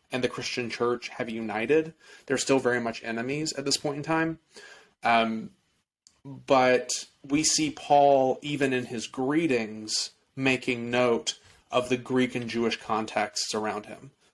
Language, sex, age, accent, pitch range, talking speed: English, male, 30-49, American, 115-135 Hz, 145 wpm